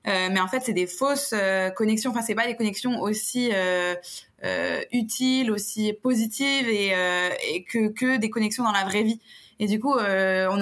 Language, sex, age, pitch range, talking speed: French, female, 20-39, 195-230 Hz, 205 wpm